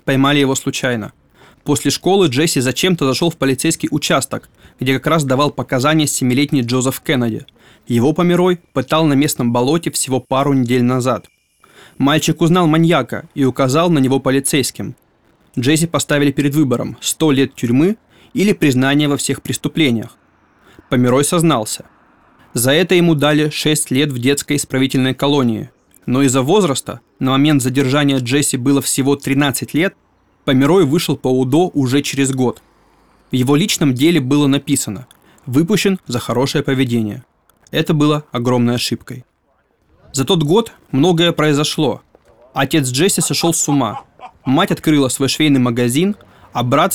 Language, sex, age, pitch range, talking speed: Russian, male, 20-39, 130-155 Hz, 140 wpm